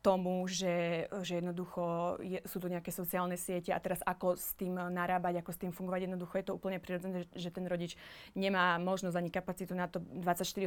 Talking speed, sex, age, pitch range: 195 wpm, female, 20-39, 180-195 Hz